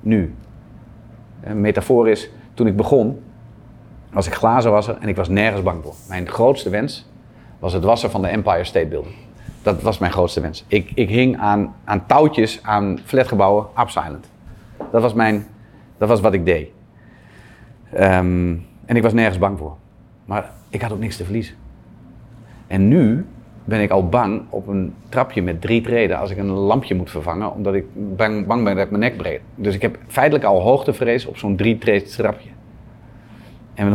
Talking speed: 180 wpm